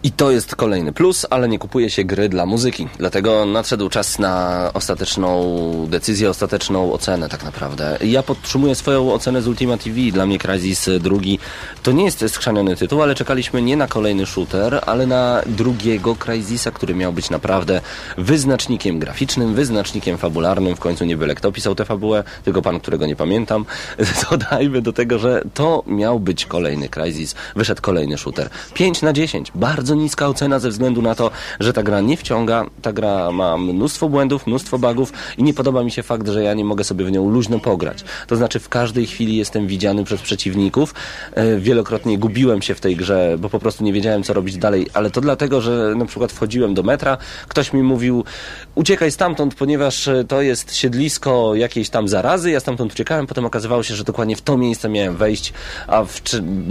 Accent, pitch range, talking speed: native, 95-125 Hz, 190 wpm